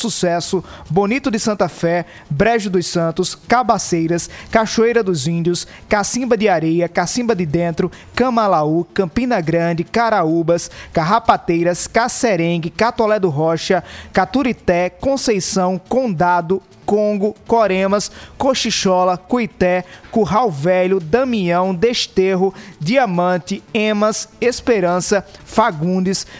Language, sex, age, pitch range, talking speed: Portuguese, male, 20-39, 180-225 Hz, 95 wpm